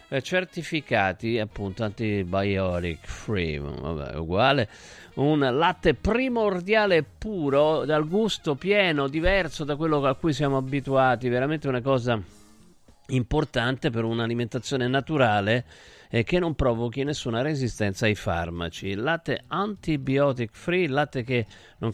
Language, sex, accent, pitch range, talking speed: Italian, male, native, 115-165 Hz, 115 wpm